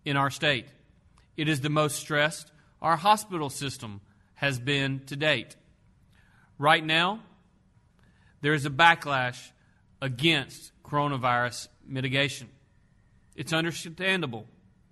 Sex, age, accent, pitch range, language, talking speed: male, 40-59, American, 135-175 Hz, English, 105 wpm